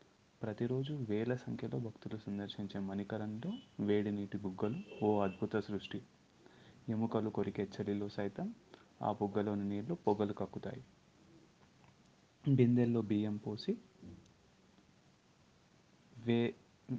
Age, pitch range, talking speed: 30-49, 100-115 Hz, 90 wpm